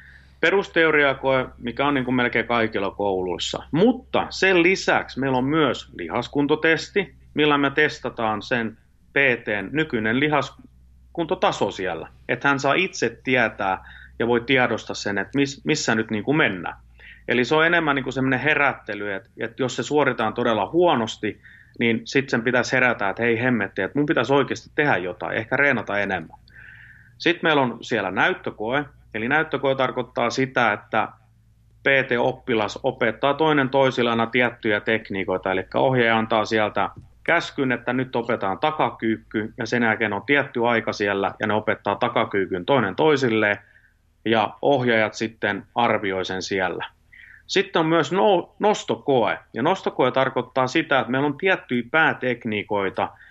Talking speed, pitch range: 140 wpm, 110-140 Hz